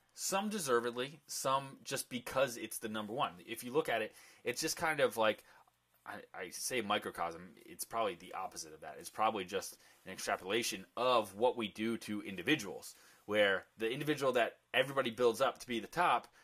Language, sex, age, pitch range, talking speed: English, male, 20-39, 105-130 Hz, 185 wpm